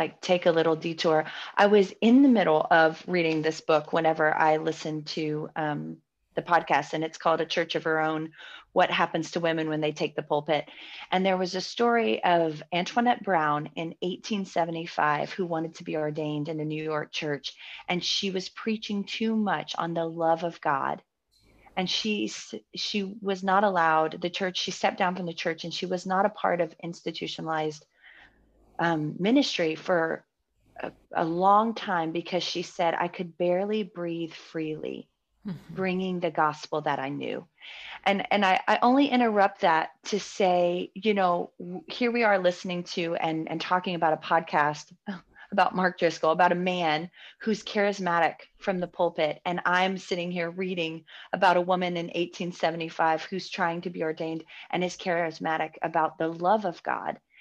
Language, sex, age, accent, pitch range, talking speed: English, female, 30-49, American, 160-185 Hz, 175 wpm